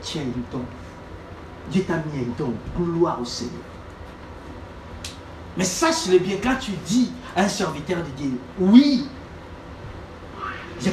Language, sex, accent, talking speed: French, male, French, 130 wpm